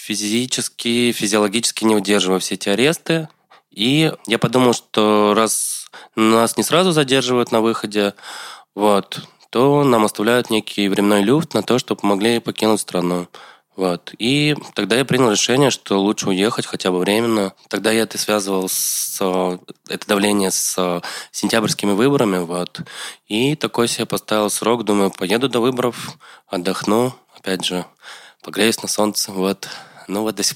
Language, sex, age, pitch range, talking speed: Russian, male, 20-39, 100-120 Hz, 135 wpm